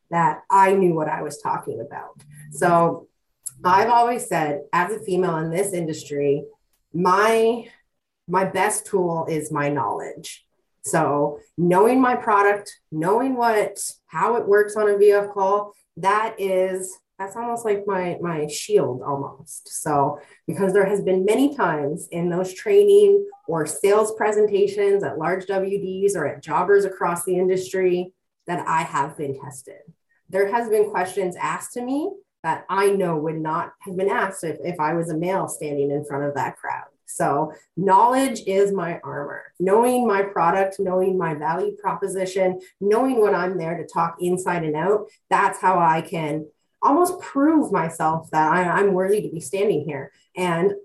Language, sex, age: English, female, 30-49